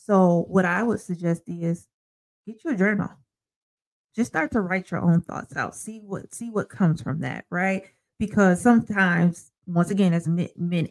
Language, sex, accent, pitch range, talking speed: English, female, American, 165-200 Hz, 175 wpm